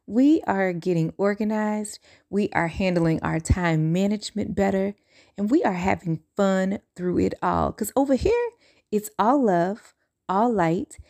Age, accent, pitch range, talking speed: 30-49, American, 165-225 Hz, 145 wpm